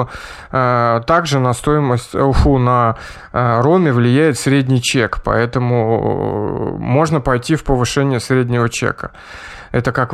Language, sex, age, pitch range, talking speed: Russian, male, 20-39, 115-140 Hz, 105 wpm